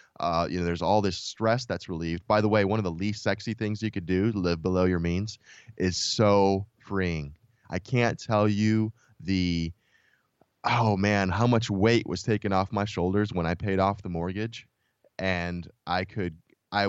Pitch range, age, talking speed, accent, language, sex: 95-115 Hz, 20-39, 190 wpm, American, English, male